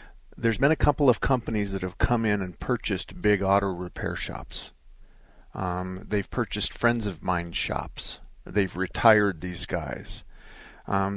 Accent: American